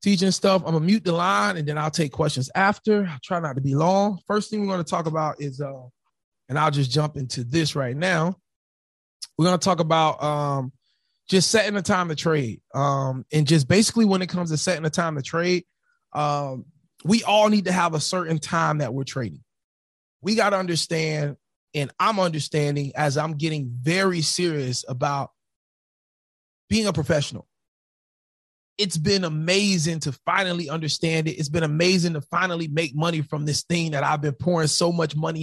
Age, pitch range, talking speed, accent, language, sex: 30-49, 145-185 Hz, 195 wpm, American, English, male